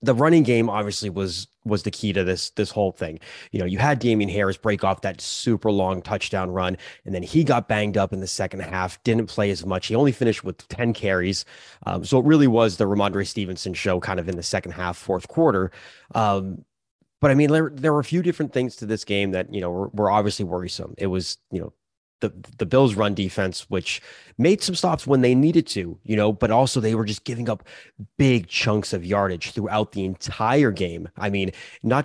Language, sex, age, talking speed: English, male, 30-49, 225 wpm